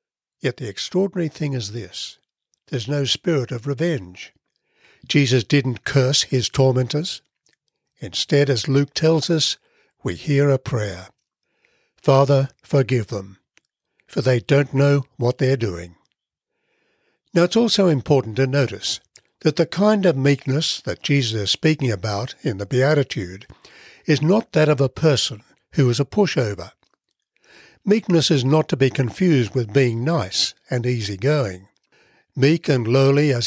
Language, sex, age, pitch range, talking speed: English, male, 60-79, 125-160 Hz, 140 wpm